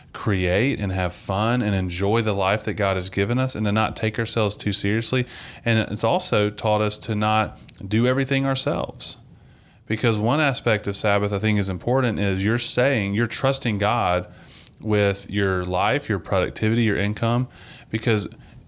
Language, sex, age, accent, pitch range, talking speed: English, male, 30-49, American, 100-125 Hz, 170 wpm